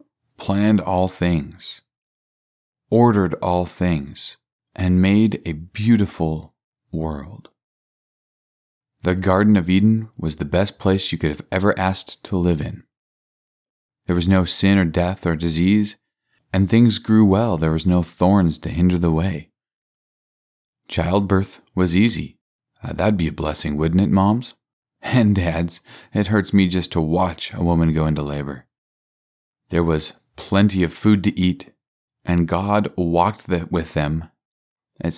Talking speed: 145 wpm